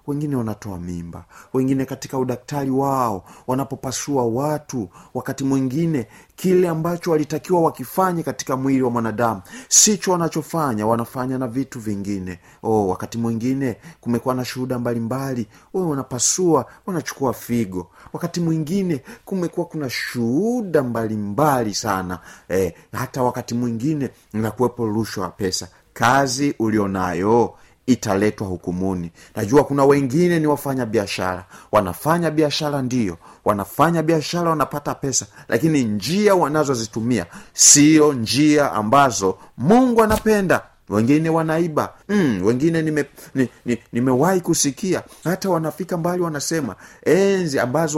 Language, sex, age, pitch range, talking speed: Swahili, male, 40-59, 115-155 Hz, 115 wpm